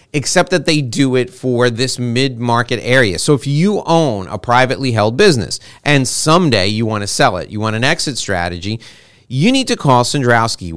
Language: English